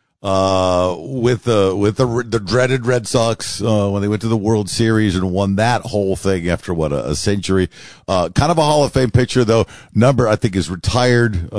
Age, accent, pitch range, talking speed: 50-69, American, 95-125 Hz, 215 wpm